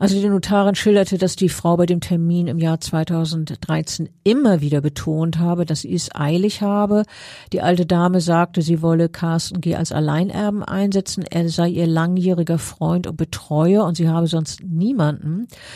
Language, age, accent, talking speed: German, 50-69, German, 170 wpm